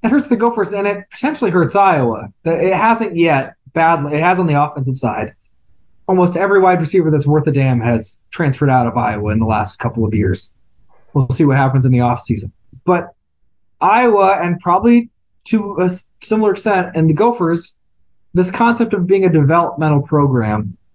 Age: 20-39